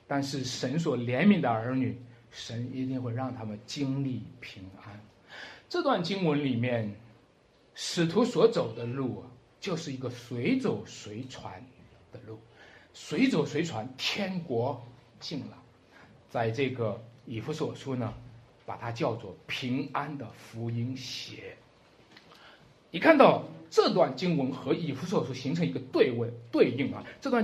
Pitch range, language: 115-165 Hz, Chinese